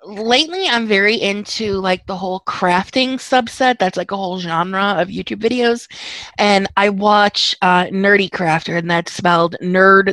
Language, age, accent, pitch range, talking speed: English, 20-39, American, 170-205 Hz, 160 wpm